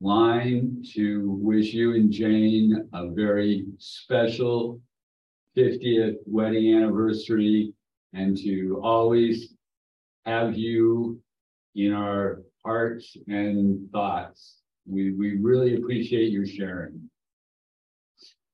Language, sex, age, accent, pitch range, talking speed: English, male, 50-69, American, 100-125 Hz, 90 wpm